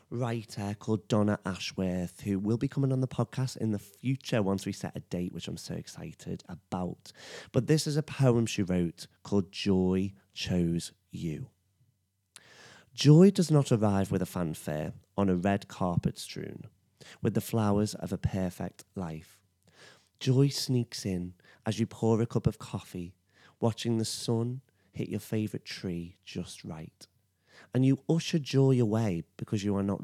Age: 30-49